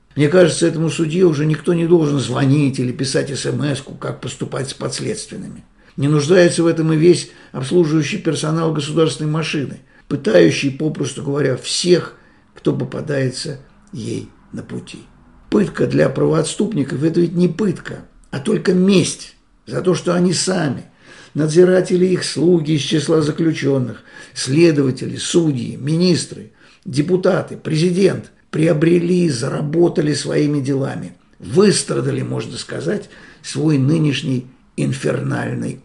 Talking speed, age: 120 wpm, 50-69